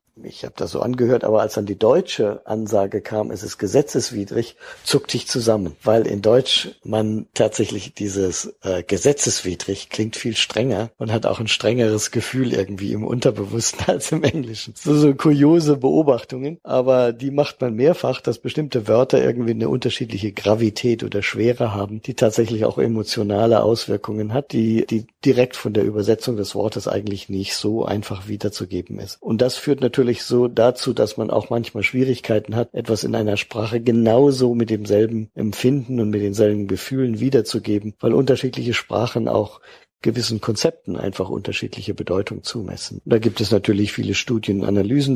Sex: male